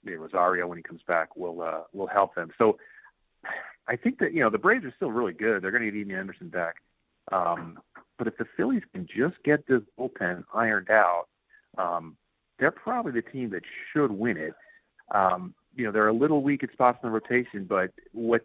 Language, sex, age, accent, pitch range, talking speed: English, male, 40-59, American, 95-130 Hz, 210 wpm